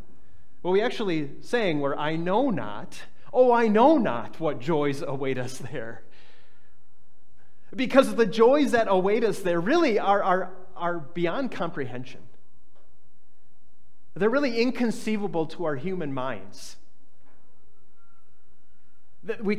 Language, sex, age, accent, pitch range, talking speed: English, male, 30-49, American, 115-170 Hz, 115 wpm